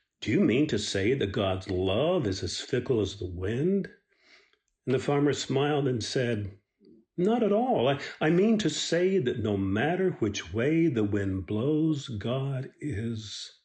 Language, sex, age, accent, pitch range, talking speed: English, male, 50-69, American, 105-170 Hz, 165 wpm